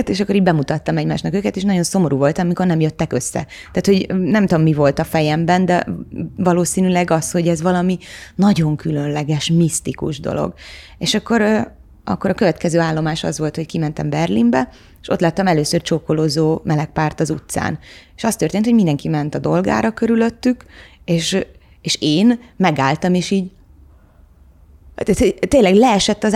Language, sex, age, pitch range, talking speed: Hungarian, female, 20-39, 150-190 Hz, 160 wpm